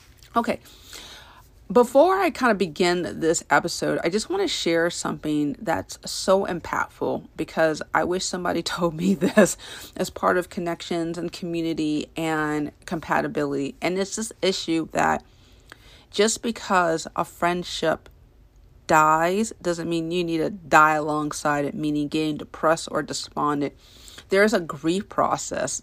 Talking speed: 140 wpm